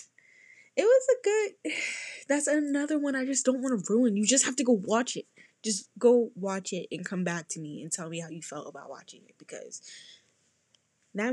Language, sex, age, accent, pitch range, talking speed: English, female, 10-29, American, 180-280 Hz, 210 wpm